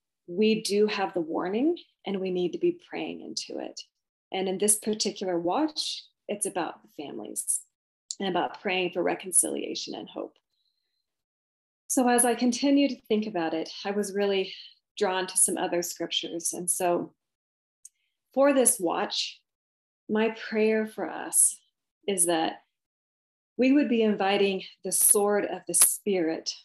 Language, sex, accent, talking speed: English, female, American, 145 wpm